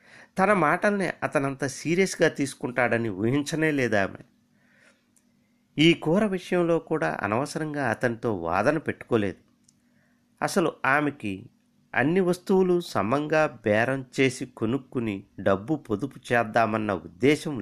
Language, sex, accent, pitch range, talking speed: Telugu, male, native, 115-170 Hz, 90 wpm